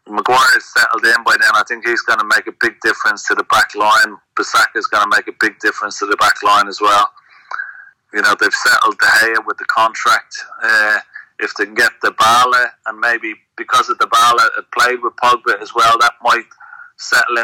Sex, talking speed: male, 215 wpm